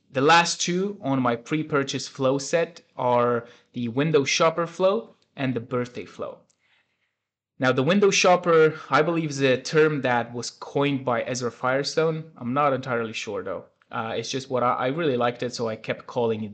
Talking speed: 185 wpm